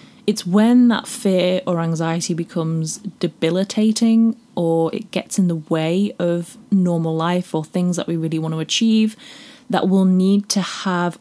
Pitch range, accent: 170-220 Hz, British